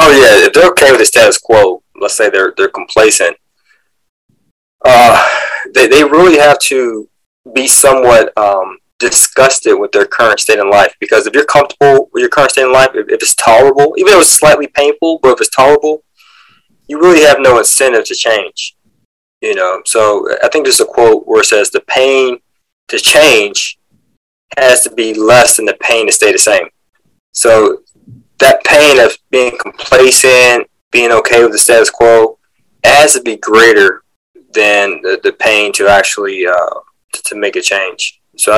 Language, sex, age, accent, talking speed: English, male, 20-39, American, 175 wpm